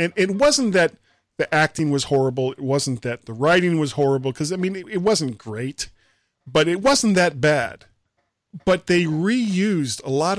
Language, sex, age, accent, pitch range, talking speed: English, male, 40-59, American, 125-175 Hz, 185 wpm